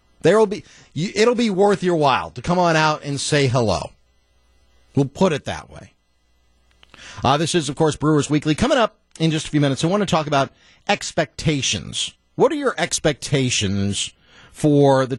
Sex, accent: male, American